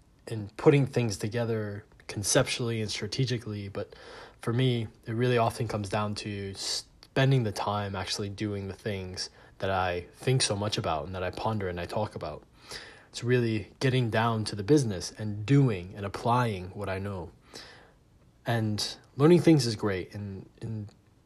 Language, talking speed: English, 165 wpm